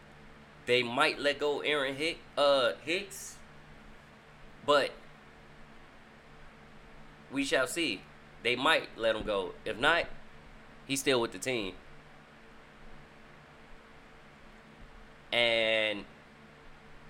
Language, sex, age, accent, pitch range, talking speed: English, male, 20-39, American, 75-120 Hz, 85 wpm